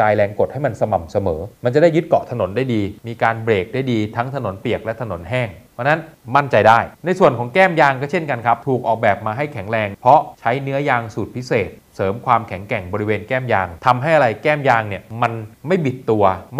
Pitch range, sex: 105-135 Hz, male